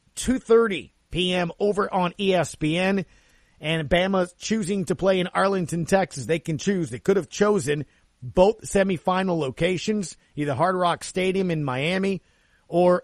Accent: American